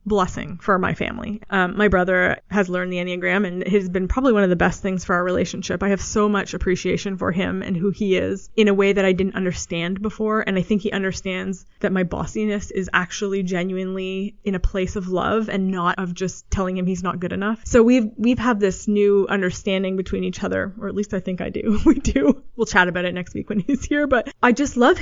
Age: 20-39